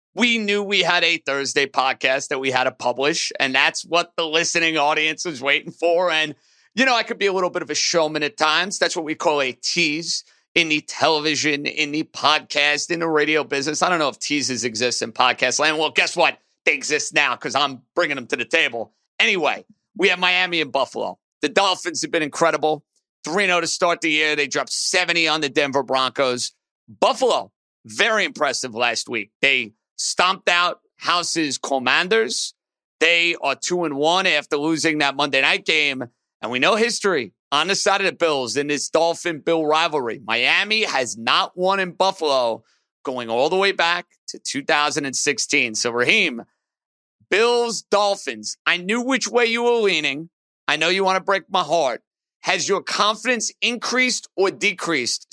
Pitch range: 145-190 Hz